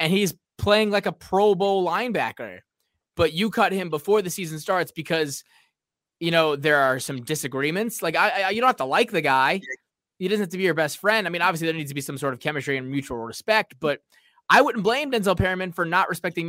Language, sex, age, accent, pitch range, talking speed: English, male, 20-39, American, 140-180 Hz, 235 wpm